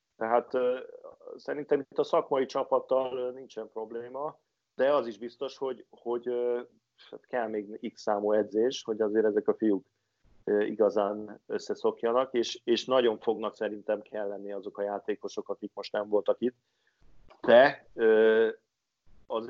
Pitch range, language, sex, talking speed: 105-125 Hz, Hungarian, male, 150 wpm